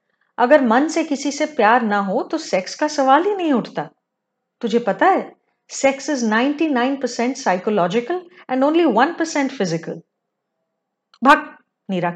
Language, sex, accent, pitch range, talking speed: Hindi, female, native, 210-300 Hz, 145 wpm